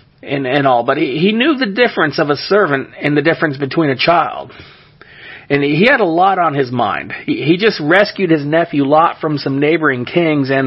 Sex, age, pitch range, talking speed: male, 40-59, 140-185 Hz, 220 wpm